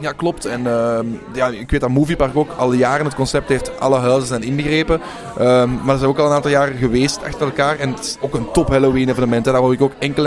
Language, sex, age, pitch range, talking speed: Dutch, male, 20-39, 130-150 Hz, 255 wpm